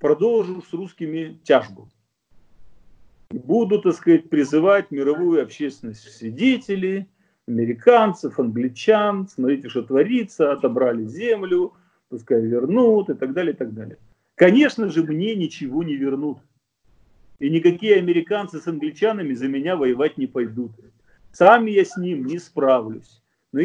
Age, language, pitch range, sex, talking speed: 40-59, Russian, 130-210 Hz, male, 125 wpm